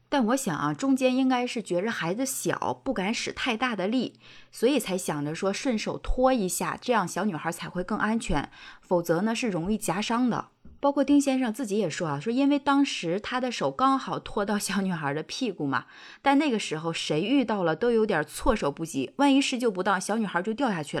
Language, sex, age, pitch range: Chinese, female, 20-39, 175-245 Hz